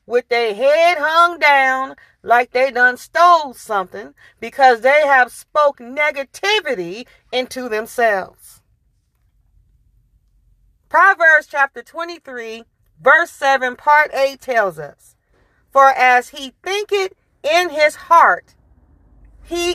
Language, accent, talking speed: English, American, 105 wpm